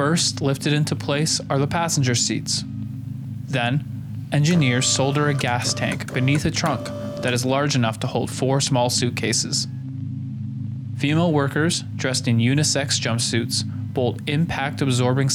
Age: 20-39